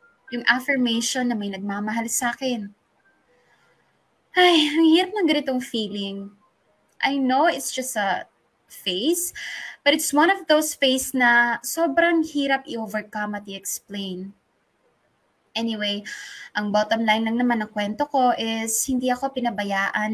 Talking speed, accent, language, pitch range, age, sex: 125 wpm, Filipino, English, 205-280 Hz, 20-39, female